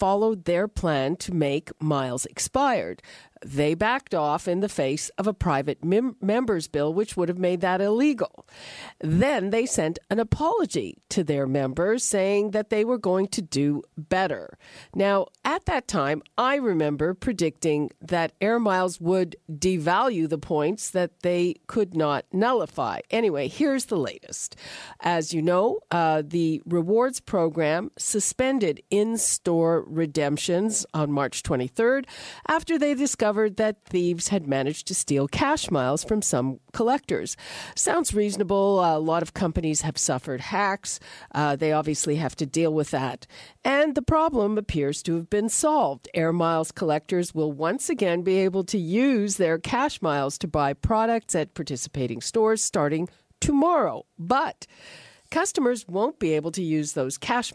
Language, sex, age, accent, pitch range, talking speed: English, female, 50-69, American, 155-215 Hz, 150 wpm